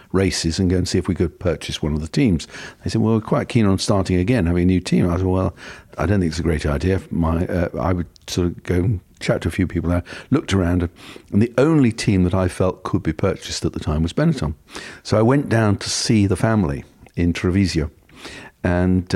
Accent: British